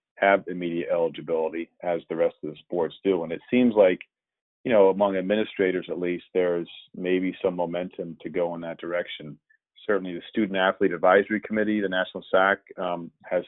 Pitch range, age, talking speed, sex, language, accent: 85-105 Hz, 40-59, 180 wpm, male, English, American